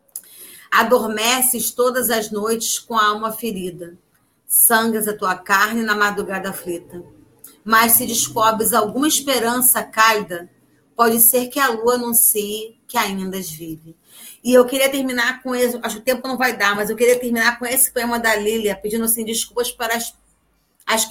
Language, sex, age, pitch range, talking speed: Portuguese, female, 30-49, 210-255 Hz, 170 wpm